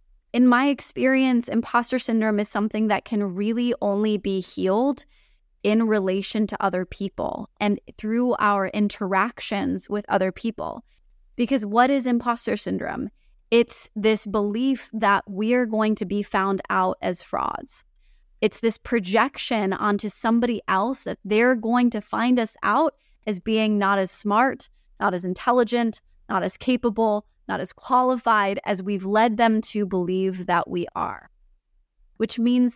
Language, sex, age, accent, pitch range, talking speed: English, female, 20-39, American, 205-245 Hz, 145 wpm